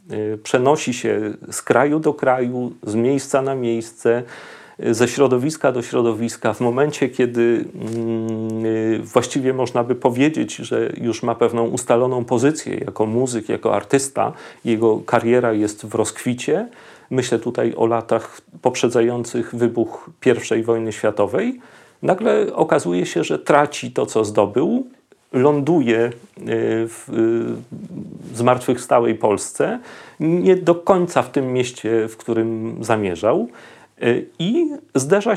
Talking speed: 115 wpm